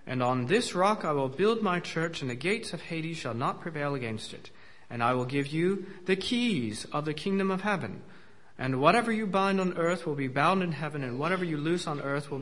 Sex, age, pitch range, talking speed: male, 40-59, 135-180 Hz, 235 wpm